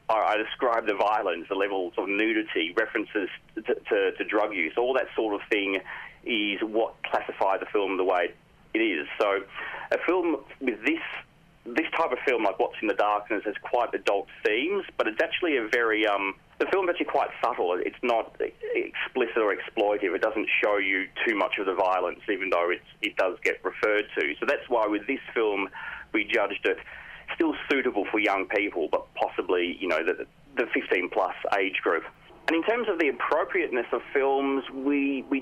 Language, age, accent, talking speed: English, 30-49, Australian, 190 wpm